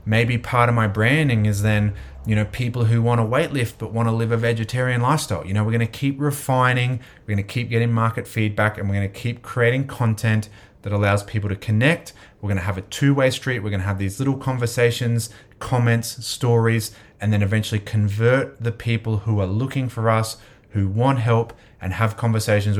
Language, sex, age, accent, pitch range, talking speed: English, male, 30-49, Australian, 110-135 Hz, 210 wpm